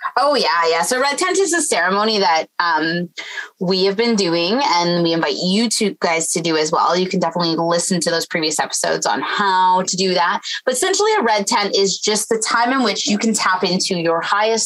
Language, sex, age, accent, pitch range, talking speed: English, female, 20-39, American, 175-225 Hz, 225 wpm